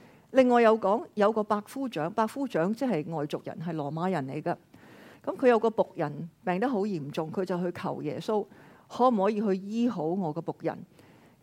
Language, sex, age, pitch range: Chinese, female, 50-69, 175-255 Hz